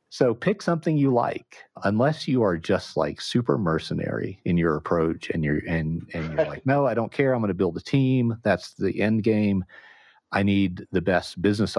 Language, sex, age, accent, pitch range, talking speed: English, male, 40-59, American, 80-115 Hz, 205 wpm